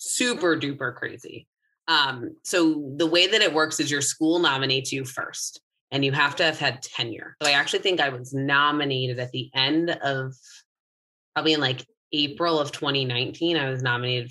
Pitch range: 135-175 Hz